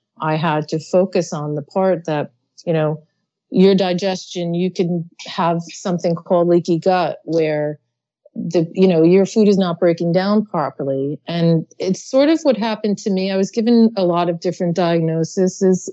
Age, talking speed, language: 40-59, 175 wpm, English